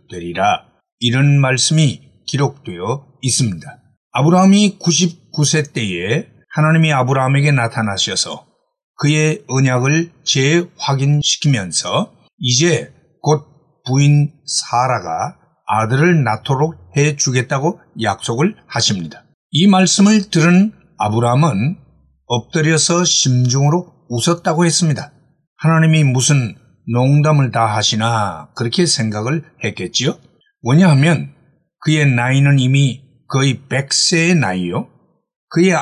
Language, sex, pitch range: Korean, male, 130-170 Hz